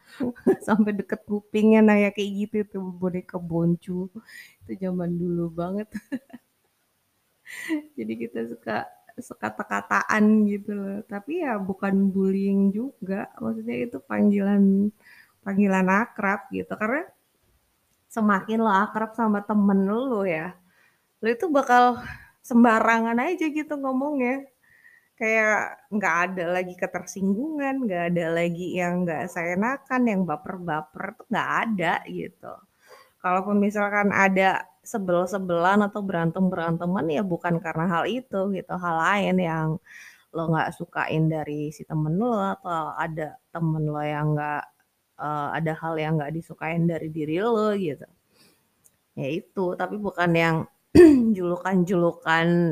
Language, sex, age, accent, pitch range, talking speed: Indonesian, female, 20-39, native, 170-220 Hz, 125 wpm